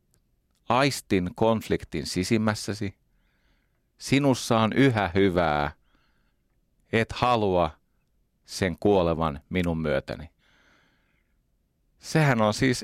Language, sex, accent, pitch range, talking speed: Finnish, male, native, 85-115 Hz, 75 wpm